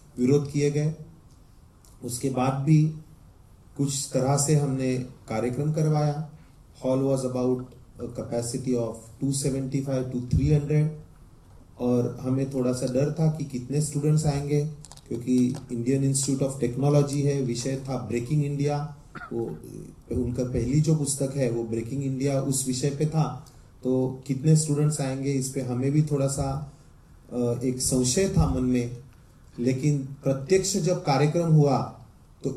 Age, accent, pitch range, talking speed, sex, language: 30-49, Indian, 125-150 Hz, 120 wpm, male, English